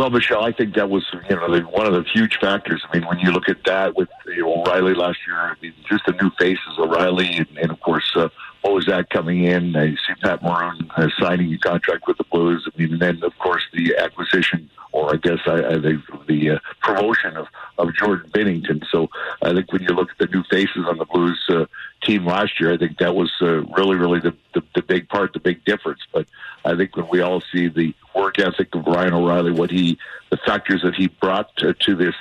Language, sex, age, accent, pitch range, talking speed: English, male, 60-79, American, 85-95 Hz, 240 wpm